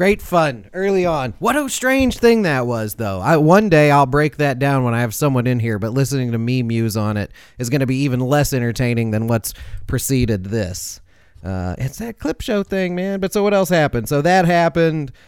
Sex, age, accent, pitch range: male, 30-49, American, 110-145 Hz